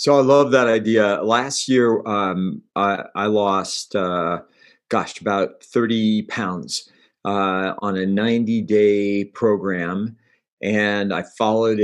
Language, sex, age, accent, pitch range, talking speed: English, male, 50-69, American, 105-135 Hz, 120 wpm